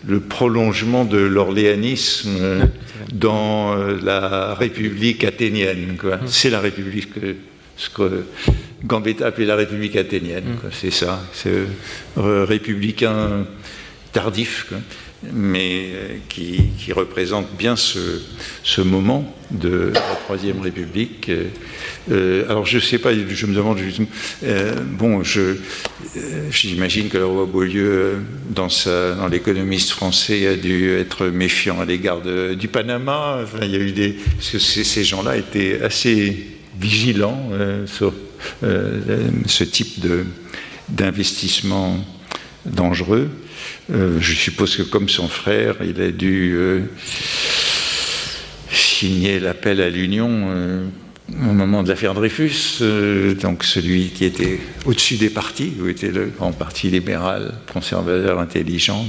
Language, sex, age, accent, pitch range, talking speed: French, male, 60-79, French, 95-110 Hz, 130 wpm